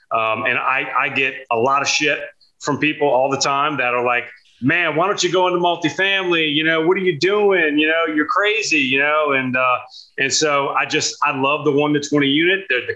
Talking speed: 235 wpm